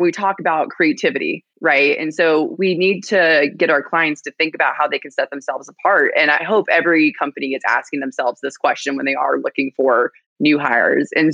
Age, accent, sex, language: 20-39, American, female, English